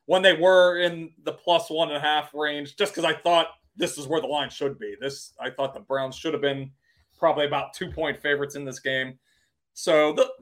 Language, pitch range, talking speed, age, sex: English, 135-180 Hz, 225 wpm, 30-49, male